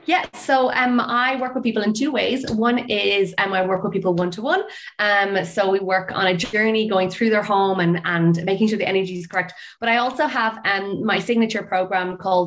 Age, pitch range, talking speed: 20-39, 180-225 Hz, 220 wpm